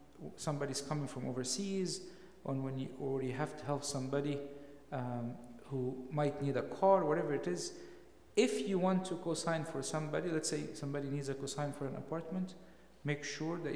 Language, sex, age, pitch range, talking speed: English, male, 50-69, 135-165 Hz, 170 wpm